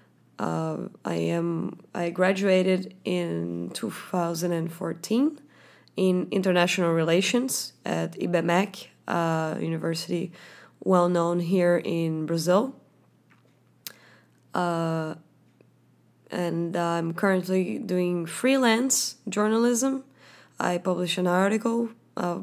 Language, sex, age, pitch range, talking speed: English, female, 20-39, 165-195 Hz, 90 wpm